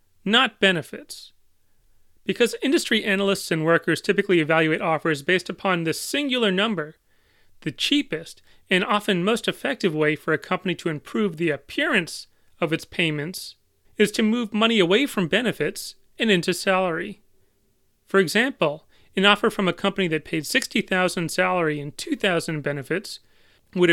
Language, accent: English, American